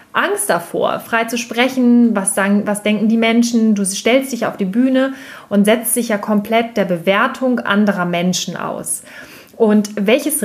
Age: 30-49